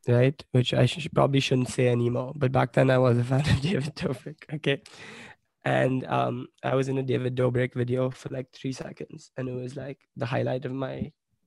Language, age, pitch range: English, 20-39, 125-150 Hz